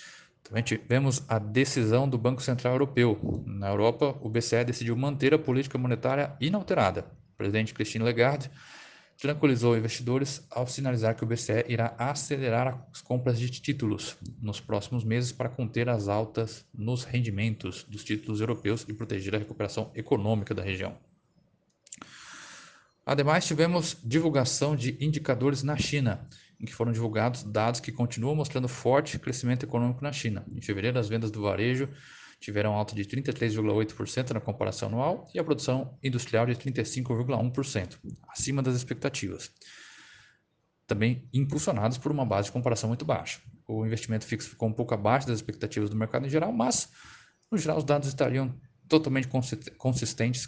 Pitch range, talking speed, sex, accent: 110-135 Hz, 150 wpm, male, Brazilian